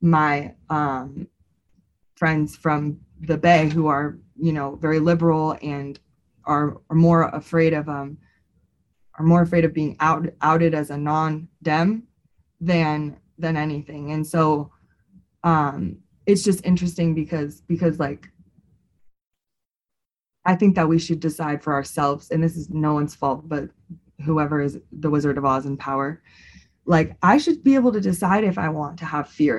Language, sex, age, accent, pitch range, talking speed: English, female, 20-39, American, 145-175 Hz, 155 wpm